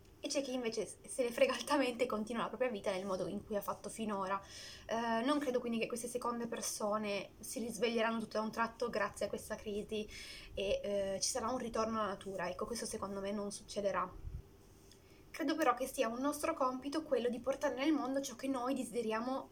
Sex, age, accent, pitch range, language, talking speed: female, 20-39, native, 205-250 Hz, Italian, 210 wpm